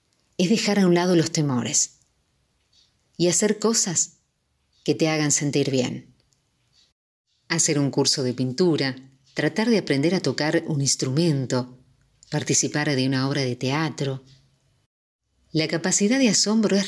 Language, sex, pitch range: Spanish, female, 130-170 Hz